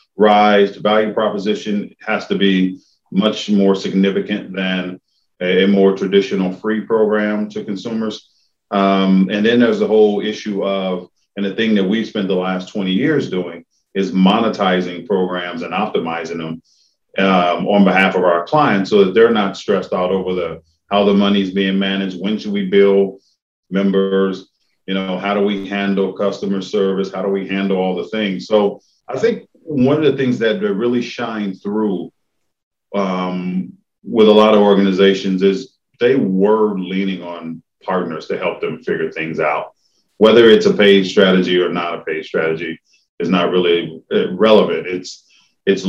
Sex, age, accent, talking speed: male, 40-59, American, 170 wpm